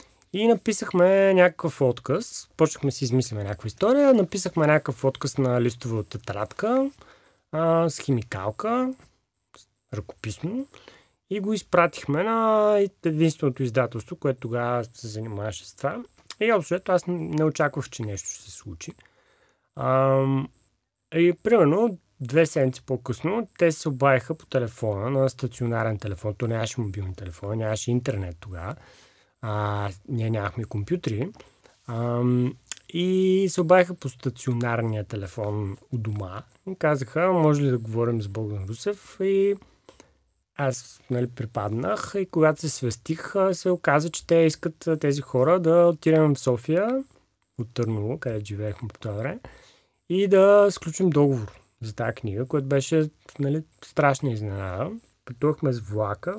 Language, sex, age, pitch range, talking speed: Bulgarian, male, 30-49, 110-170 Hz, 130 wpm